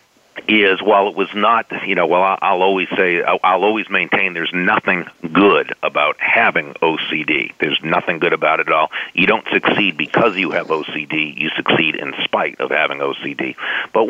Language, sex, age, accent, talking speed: English, male, 50-69, American, 180 wpm